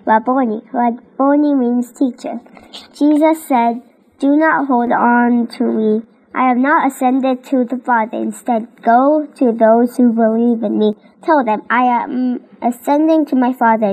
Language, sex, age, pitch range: Korean, male, 10-29, 225-260 Hz